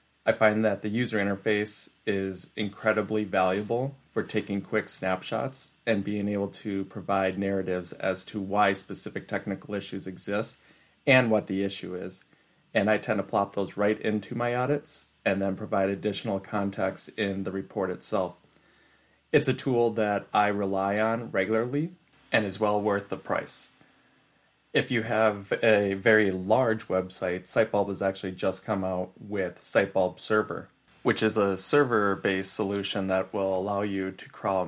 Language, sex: English, male